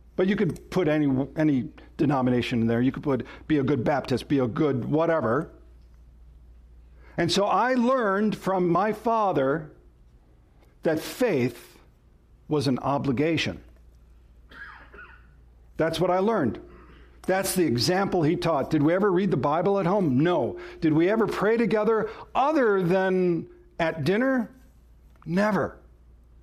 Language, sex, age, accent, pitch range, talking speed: English, male, 60-79, American, 125-210 Hz, 135 wpm